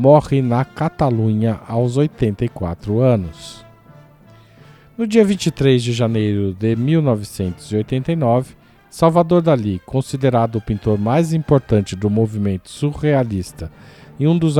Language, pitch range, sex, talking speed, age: Portuguese, 105-135 Hz, male, 105 wpm, 50-69